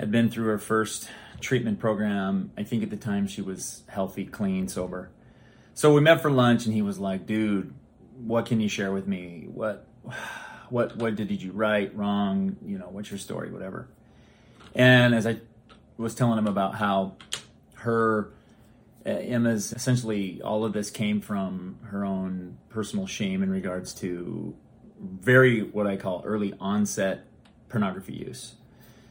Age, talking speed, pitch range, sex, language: 30-49, 160 wpm, 100-115 Hz, male, English